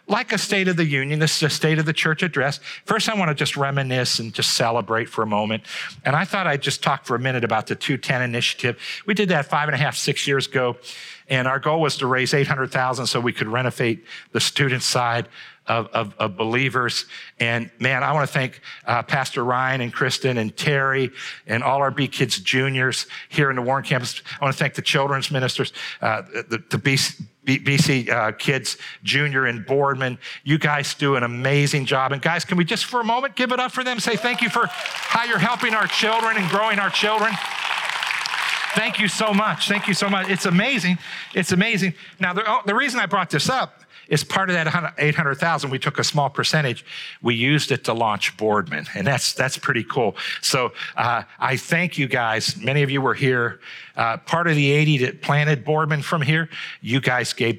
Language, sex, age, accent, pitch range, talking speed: English, male, 50-69, American, 125-165 Hz, 215 wpm